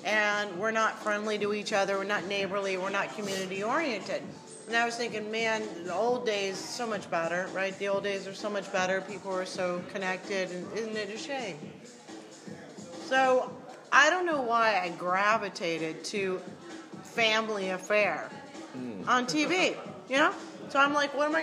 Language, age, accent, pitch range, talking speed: English, 40-59, American, 195-245 Hz, 170 wpm